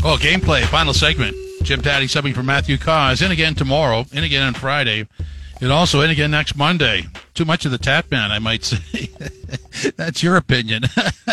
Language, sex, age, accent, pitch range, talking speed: English, male, 50-69, American, 115-140 Hz, 185 wpm